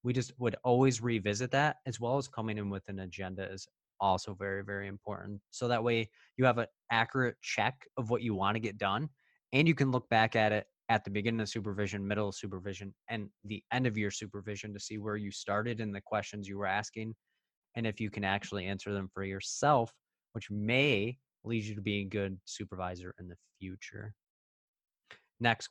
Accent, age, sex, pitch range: American, 20-39, male, 100-115 Hz